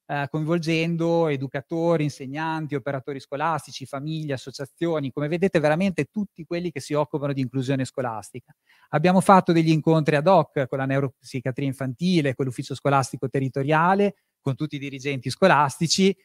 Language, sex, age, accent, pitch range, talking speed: Italian, male, 30-49, native, 140-170 Hz, 135 wpm